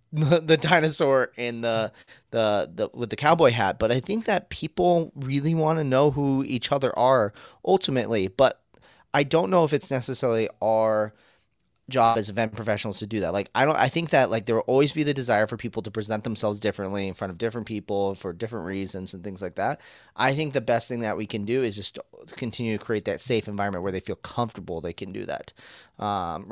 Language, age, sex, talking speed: English, 30-49, male, 215 wpm